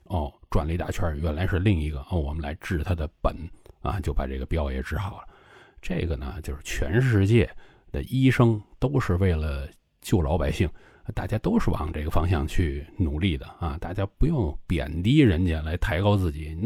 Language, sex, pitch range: Chinese, male, 75-105 Hz